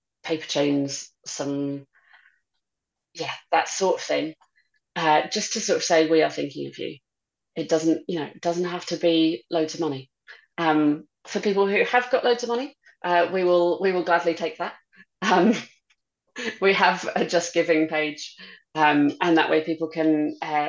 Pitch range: 150-180 Hz